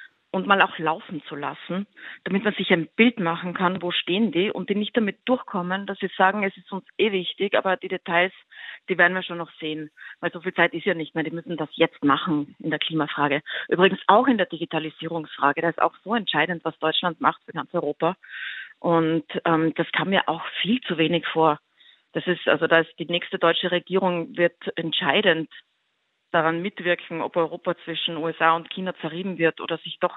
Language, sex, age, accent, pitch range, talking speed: German, female, 30-49, German, 165-200 Hz, 205 wpm